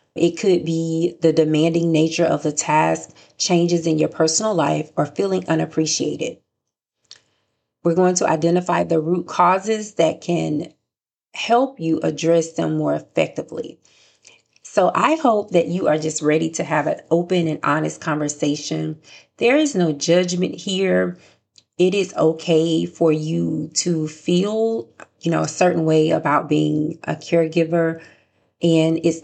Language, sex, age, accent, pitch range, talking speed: English, female, 30-49, American, 160-180 Hz, 145 wpm